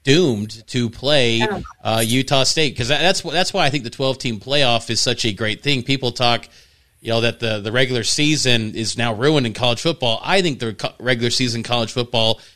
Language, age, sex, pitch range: English, 30-49, male, 115-135 Hz